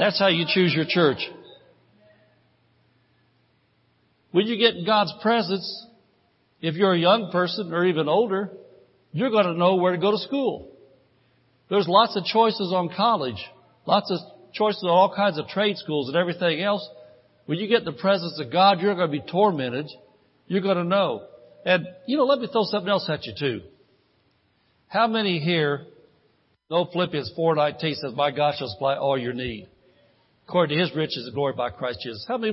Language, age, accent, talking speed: English, 60-79, American, 185 wpm